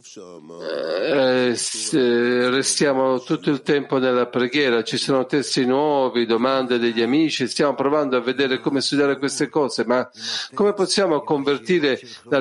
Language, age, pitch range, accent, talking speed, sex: Italian, 50-69, 120-145 Hz, native, 130 wpm, male